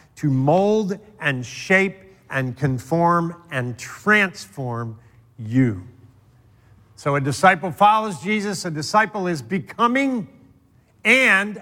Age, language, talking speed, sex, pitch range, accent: 50-69, English, 100 wpm, male, 140-210 Hz, American